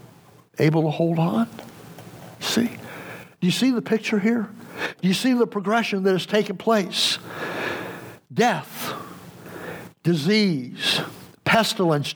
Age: 60-79